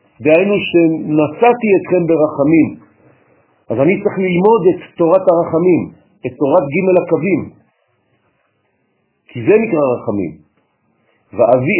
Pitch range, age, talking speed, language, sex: 145-190 Hz, 50-69, 100 wpm, French, male